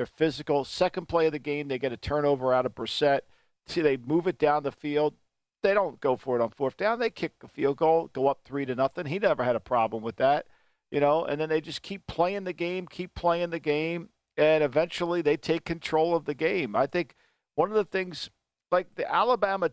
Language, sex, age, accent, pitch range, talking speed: English, male, 50-69, American, 145-175 Hz, 235 wpm